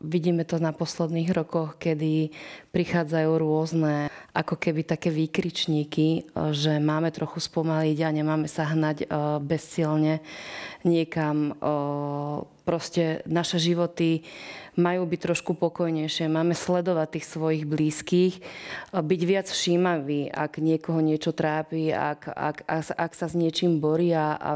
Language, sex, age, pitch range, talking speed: Slovak, female, 30-49, 155-175 Hz, 120 wpm